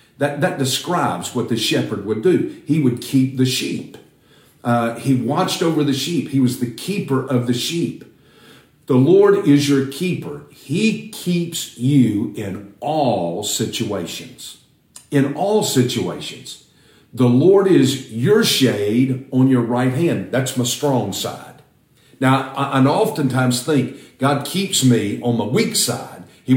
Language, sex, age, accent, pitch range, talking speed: English, male, 50-69, American, 120-150 Hz, 150 wpm